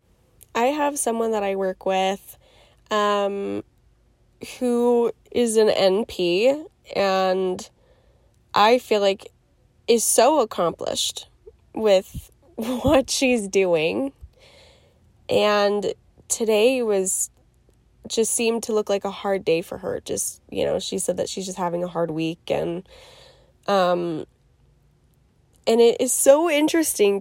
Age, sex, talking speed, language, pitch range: 10-29, female, 125 wpm, English, 185-235 Hz